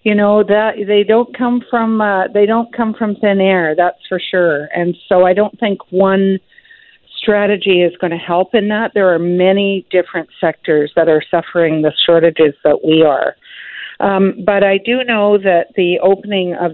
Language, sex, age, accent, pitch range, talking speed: English, female, 50-69, American, 170-210 Hz, 185 wpm